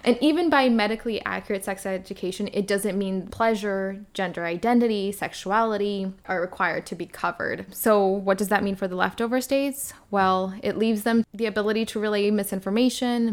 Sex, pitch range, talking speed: female, 190-225 Hz, 165 wpm